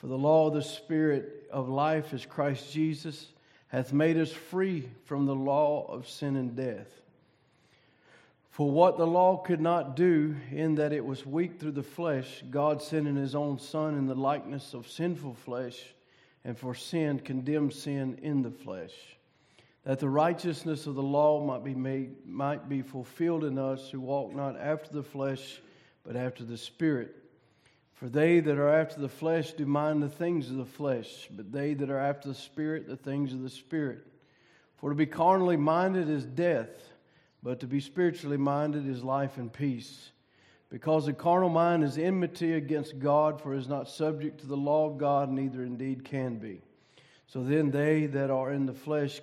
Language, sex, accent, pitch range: English, male, American, 135-155 Hz